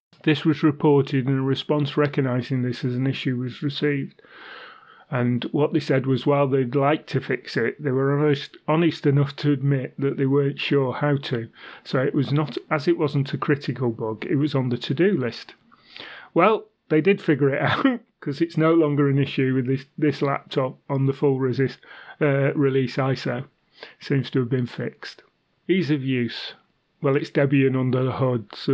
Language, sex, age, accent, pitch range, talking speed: English, male, 30-49, British, 130-145 Hz, 190 wpm